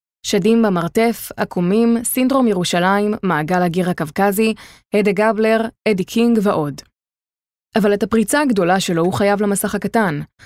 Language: Hebrew